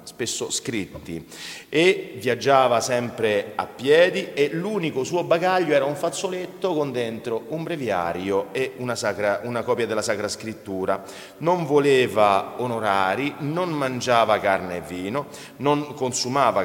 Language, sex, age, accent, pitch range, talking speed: Italian, male, 40-59, native, 115-170 Hz, 130 wpm